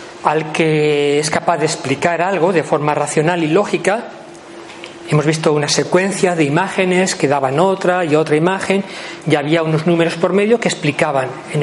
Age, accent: 40-59, Spanish